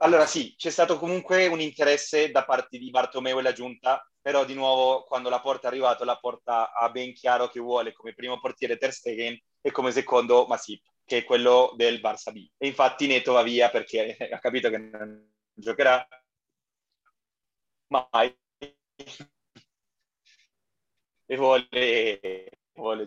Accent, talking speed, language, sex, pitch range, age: native, 155 wpm, Italian, male, 115-130 Hz, 30-49